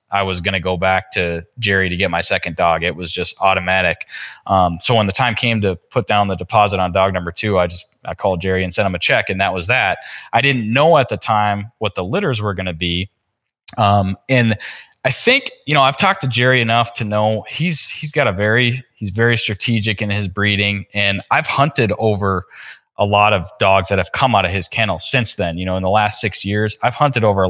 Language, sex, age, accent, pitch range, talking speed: English, male, 20-39, American, 95-115 Hz, 240 wpm